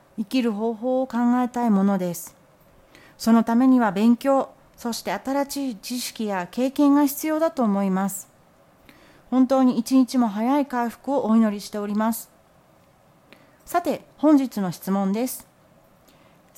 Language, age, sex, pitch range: Japanese, 40-59, female, 195-275 Hz